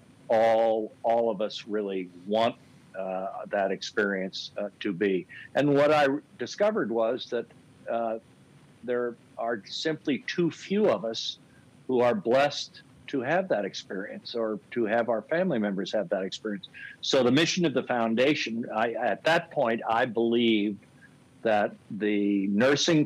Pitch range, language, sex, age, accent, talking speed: 105-130 Hz, English, male, 60-79, American, 150 wpm